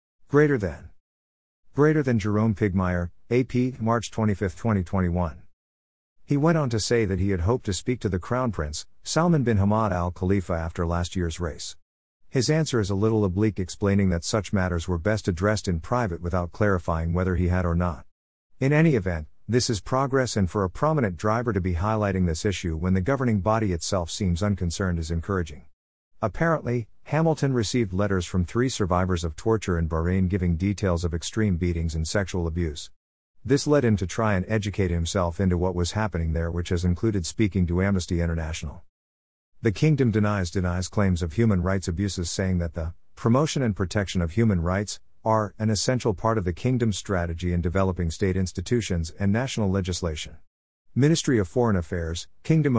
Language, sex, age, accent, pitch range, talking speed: English, male, 50-69, American, 85-110 Hz, 180 wpm